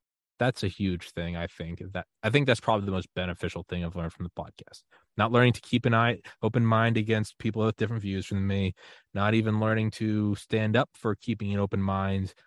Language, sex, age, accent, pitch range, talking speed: English, male, 20-39, American, 95-125 Hz, 220 wpm